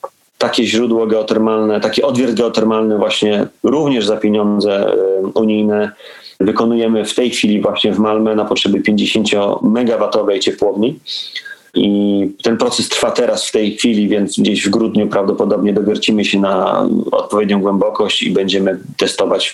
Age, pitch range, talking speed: 30-49, 105-115 Hz, 140 wpm